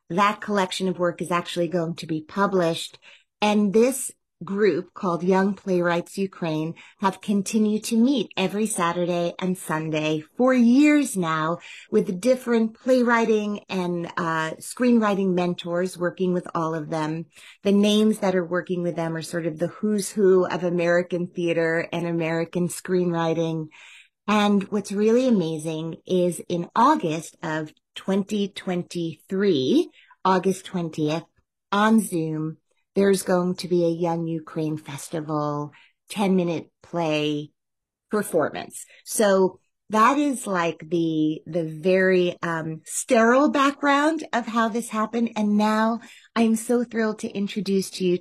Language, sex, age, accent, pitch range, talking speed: English, female, 30-49, American, 170-210 Hz, 135 wpm